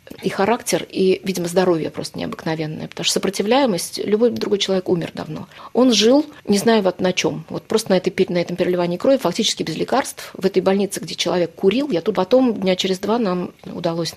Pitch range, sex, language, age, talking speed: 165-195 Hz, female, Russian, 30-49, 200 wpm